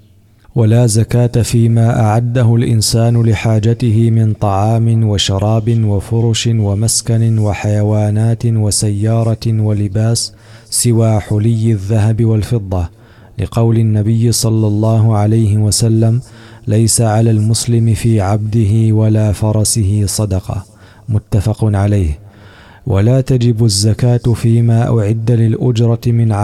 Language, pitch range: Arabic, 105-115 Hz